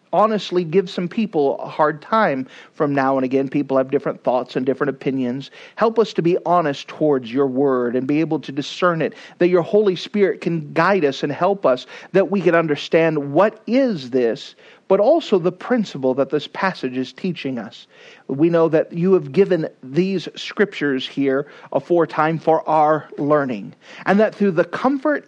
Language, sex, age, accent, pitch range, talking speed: English, male, 40-59, American, 145-205 Hz, 185 wpm